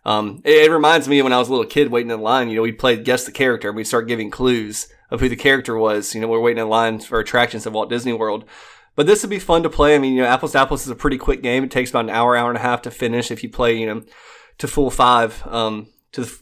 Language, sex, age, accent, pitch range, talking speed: English, male, 20-39, American, 115-145 Hz, 305 wpm